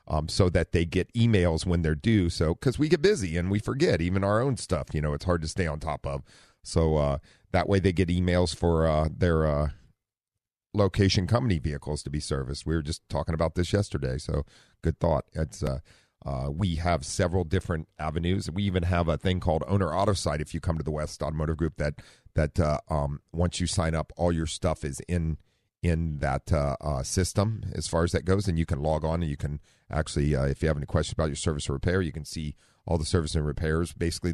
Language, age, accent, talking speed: English, 40-59, American, 235 wpm